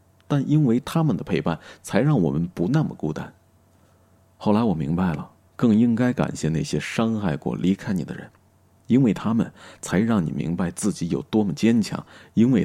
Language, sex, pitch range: Chinese, male, 85-100 Hz